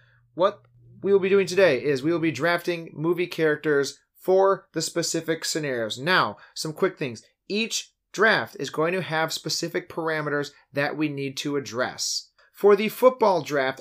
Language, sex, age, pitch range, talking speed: English, male, 30-49, 130-180 Hz, 165 wpm